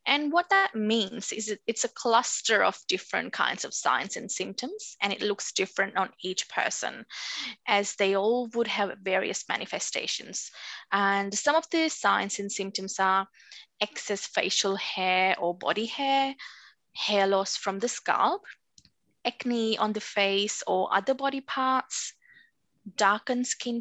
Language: English